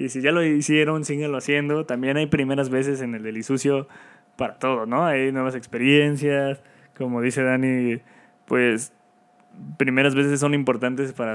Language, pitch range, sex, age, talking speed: Spanish, 120-150 Hz, male, 20-39, 155 wpm